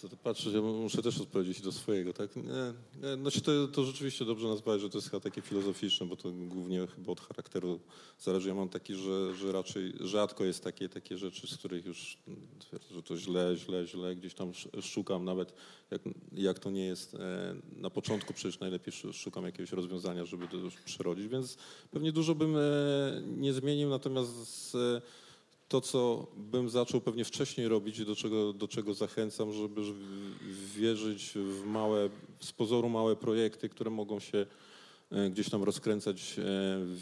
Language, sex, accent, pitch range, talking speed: Polish, male, native, 95-110 Hz, 165 wpm